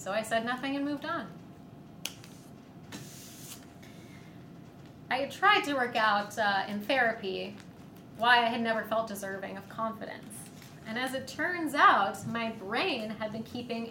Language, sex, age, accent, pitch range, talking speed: English, female, 20-39, American, 210-275 Hz, 140 wpm